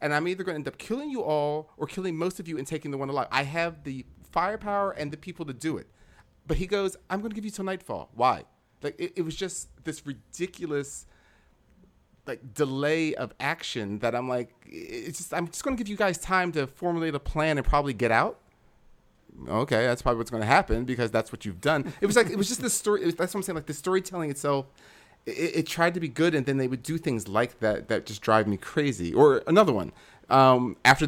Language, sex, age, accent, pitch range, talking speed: English, male, 30-49, American, 125-175 Hz, 245 wpm